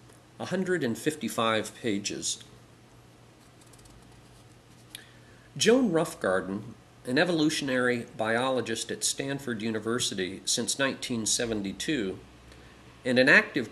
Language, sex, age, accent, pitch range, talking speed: English, male, 50-69, American, 115-165 Hz, 65 wpm